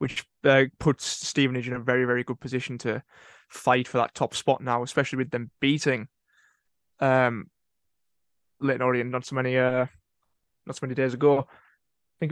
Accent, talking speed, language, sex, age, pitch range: British, 170 wpm, English, male, 20-39, 130-150 Hz